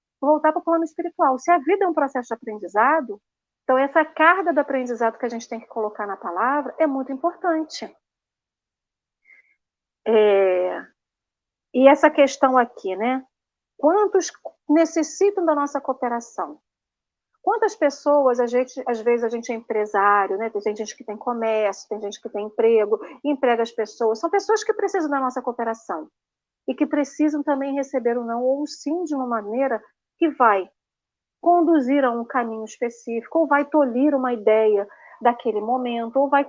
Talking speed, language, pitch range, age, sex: 160 wpm, Portuguese, 235-310 Hz, 40-59, female